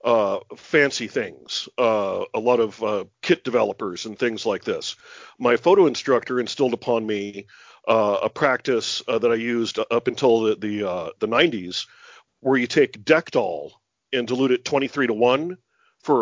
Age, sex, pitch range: 50-69, male, 125-155 Hz